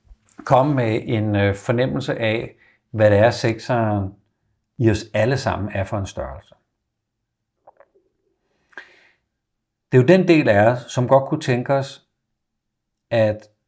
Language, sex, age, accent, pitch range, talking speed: Danish, male, 60-79, native, 110-135 Hz, 130 wpm